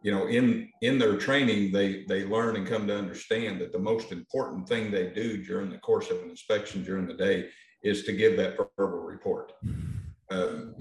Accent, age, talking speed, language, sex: American, 50-69, 200 wpm, English, male